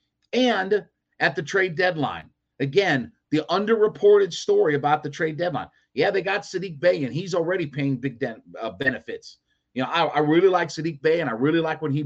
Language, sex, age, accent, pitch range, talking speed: English, male, 30-49, American, 125-160 Hz, 200 wpm